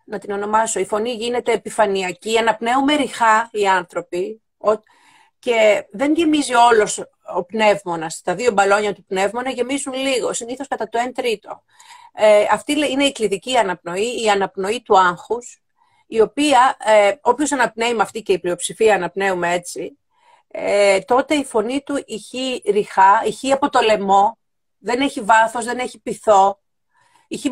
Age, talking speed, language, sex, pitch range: 40-59, 150 wpm, Greek, female, 205-265 Hz